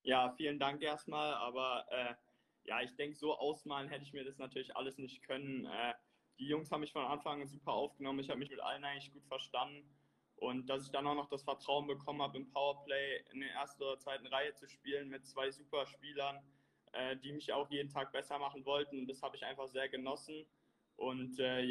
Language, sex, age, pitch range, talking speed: German, male, 20-39, 135-145 Hz, 215 wpm